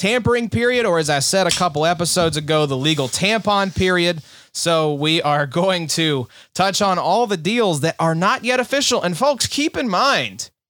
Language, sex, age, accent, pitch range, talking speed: English, male, 30-49, American, 145-205 Hz, 190 wpm